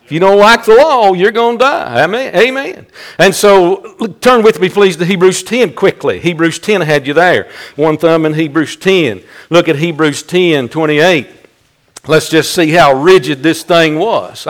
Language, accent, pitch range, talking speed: English, American, 170-205 Hz, 180 wpm